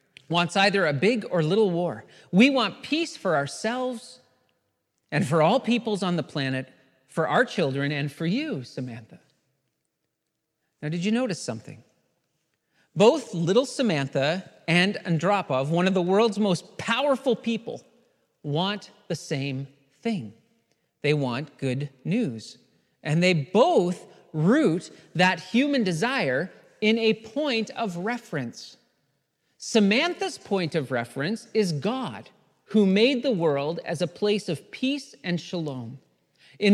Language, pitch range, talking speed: English, 140-220 Hz, 130 wpm